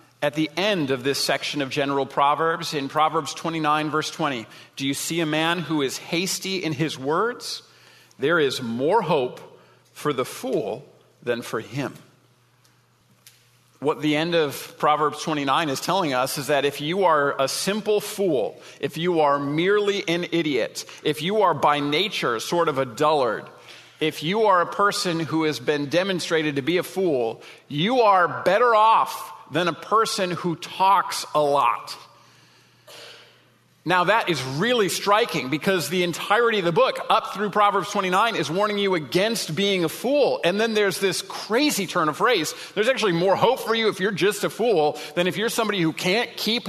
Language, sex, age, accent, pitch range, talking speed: English, male, 40-59, American, 150-200 Hz, 180 wpm